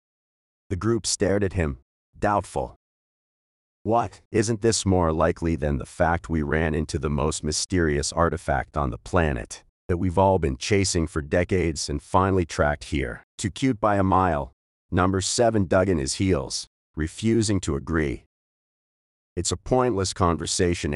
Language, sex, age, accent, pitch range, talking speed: English, male, 40-59, American, 75-95 Hz, 150 wpm